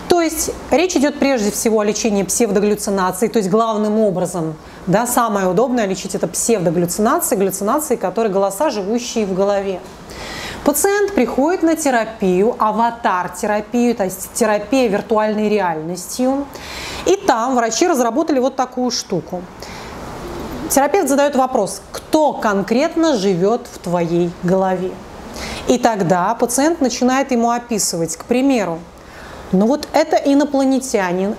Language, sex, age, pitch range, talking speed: Russian, female, 30-49, 195-250 Hz, 120 wpm